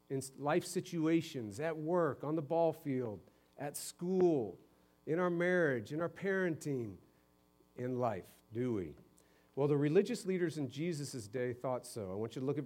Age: 50-69